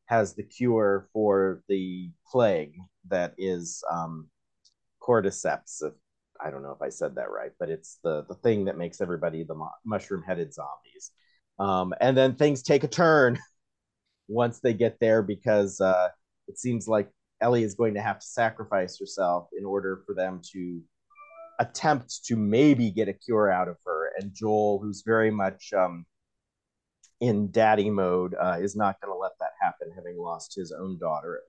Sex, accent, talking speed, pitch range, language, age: male, American, 175 wpm, 90-125 Hz, English, 30-49